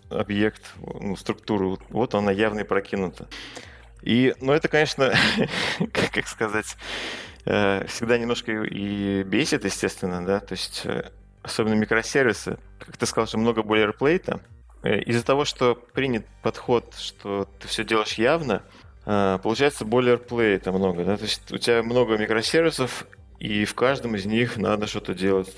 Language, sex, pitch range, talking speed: Russian, male, 95-115 Hz, 140 wpm